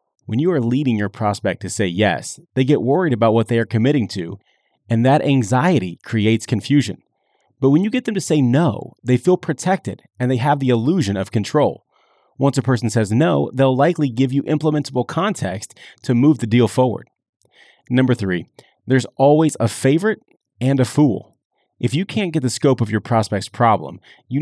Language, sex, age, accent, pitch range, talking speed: English, male, 30-49, American, 110-140 Hz, 190 wpm